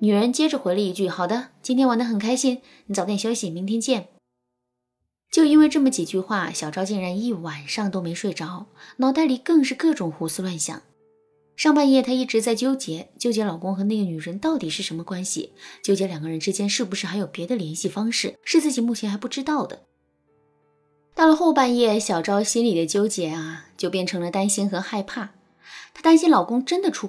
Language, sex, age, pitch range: Chinese, female, 20-39, 175-260 Hz